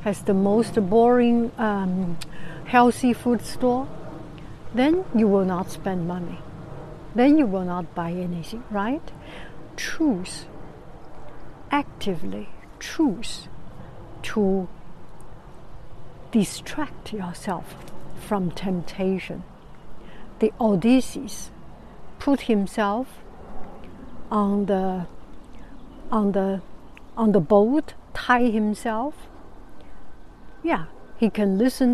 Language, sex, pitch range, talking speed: English, female, 185-245 Hz, 85 wpm